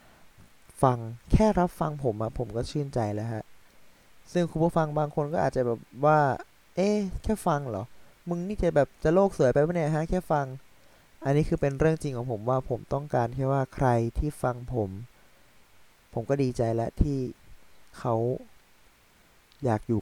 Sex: male